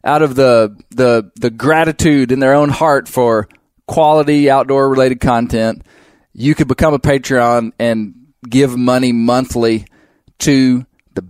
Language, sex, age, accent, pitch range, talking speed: English, male, 20-39, American, 115-135 Hz, 140 wpm